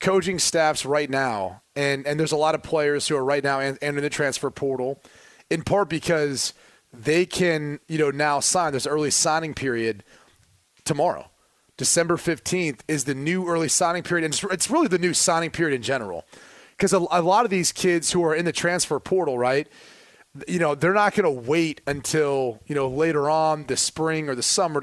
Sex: male